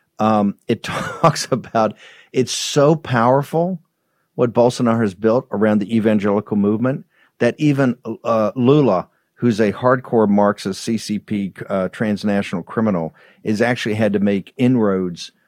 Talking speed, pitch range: 130 wpm, 95-115 Hz